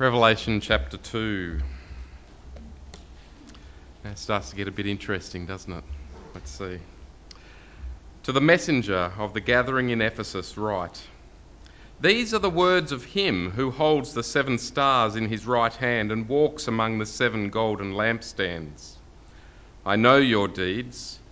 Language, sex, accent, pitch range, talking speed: English, male, Australian, 90-130 Hz, 140 wpm